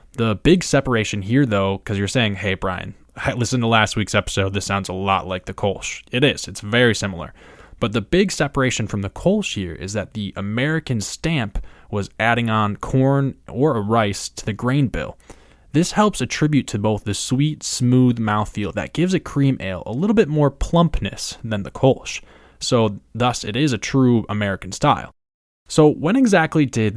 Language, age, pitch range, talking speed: English, 20-39, 100-130 Hz, 190 wpm